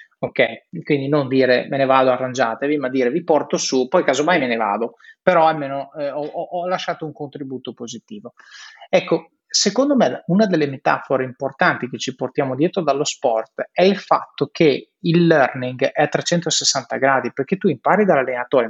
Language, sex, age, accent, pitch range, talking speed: Italian, male, 30-49, native, 140-190 Hz, 175 wpm